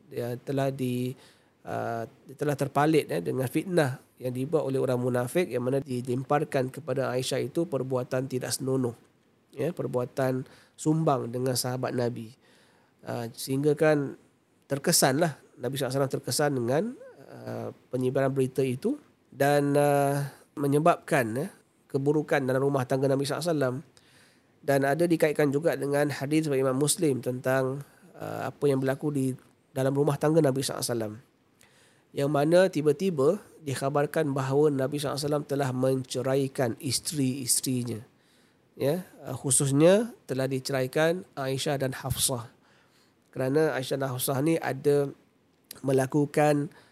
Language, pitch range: Malay, 130-150 Hz